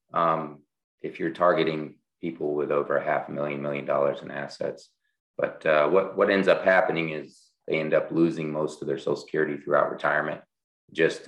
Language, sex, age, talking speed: English, male, 30-49, 185 wpm